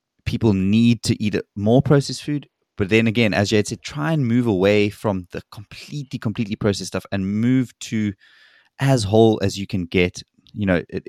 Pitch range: 95-115 Hz